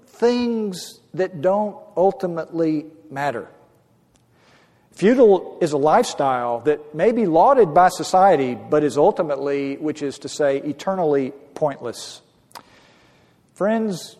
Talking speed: 105 wpm